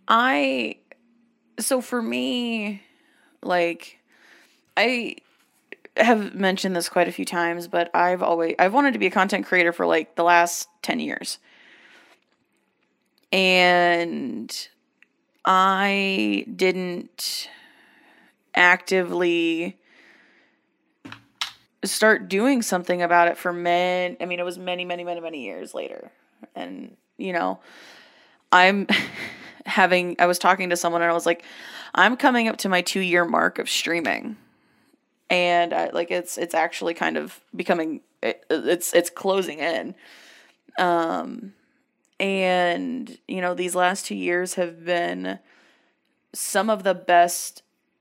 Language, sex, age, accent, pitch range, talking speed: English, female, 20-39, American, 175-210 Hz, 125 wpm